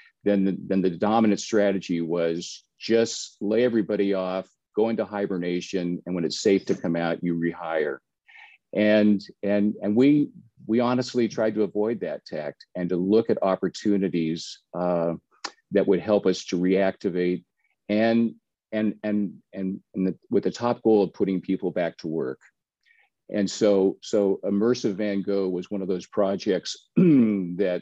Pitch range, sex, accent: 90-110 Hz, male, American